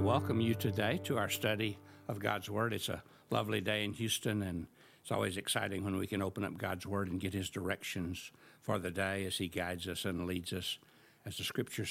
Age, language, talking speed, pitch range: 60-79, English, 215 wpm, 95-115 Hz